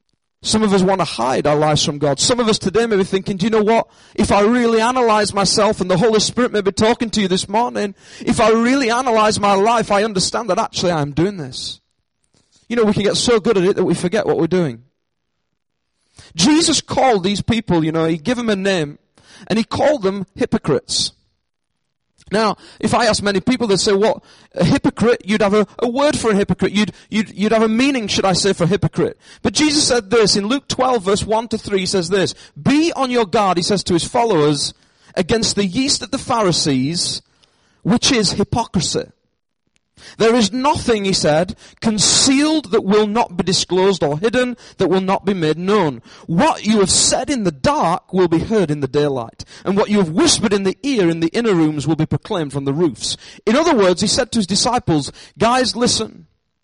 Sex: male